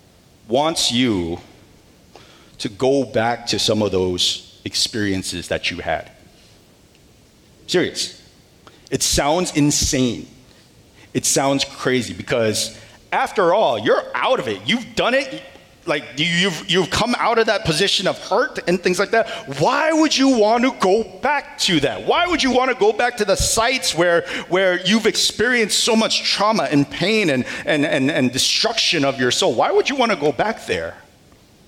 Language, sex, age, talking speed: English, male, 40-59, 165 wpm